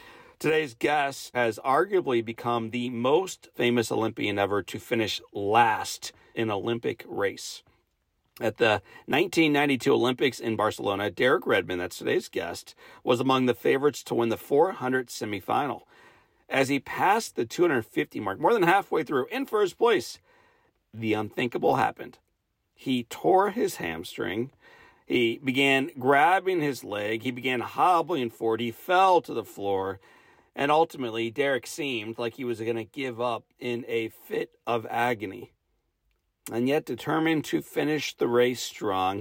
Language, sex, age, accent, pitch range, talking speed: English, male, 40-59, American, 115-155 Hz, 145 wpm